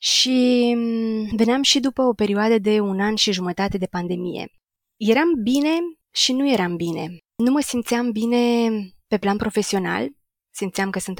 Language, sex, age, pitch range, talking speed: Romanian, female, 20-39, 190-235 Hz, 155 wpm